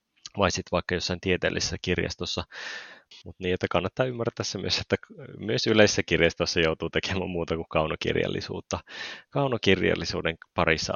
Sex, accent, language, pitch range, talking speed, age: male, native, Finnish, 85-110 Hz, 130 wpm, 20-39